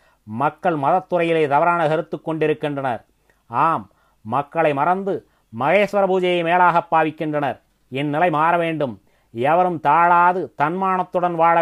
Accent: native